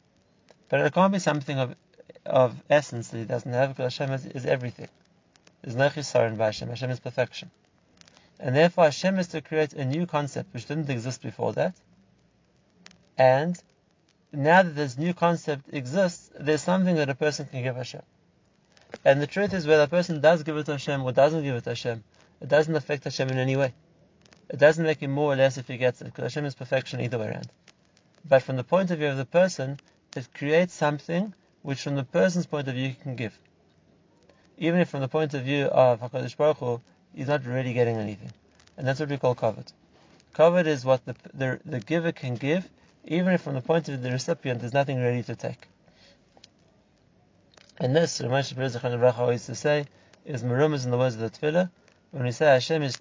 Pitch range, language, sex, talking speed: 125-155 Hz, English, male, 205 wpm